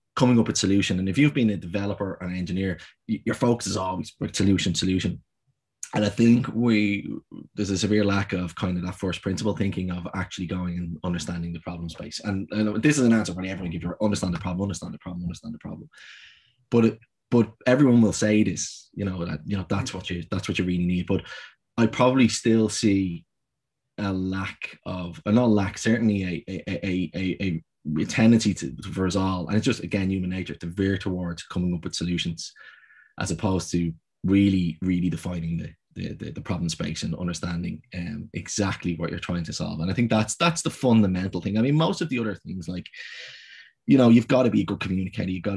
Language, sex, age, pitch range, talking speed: English, male, 20-39, 90-110 Hz, 215 wpm